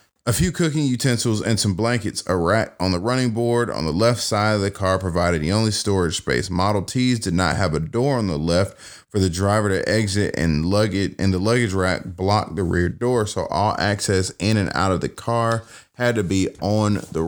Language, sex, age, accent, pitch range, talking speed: English, male, 30-49, American, 90-115 Hz, 225 wpm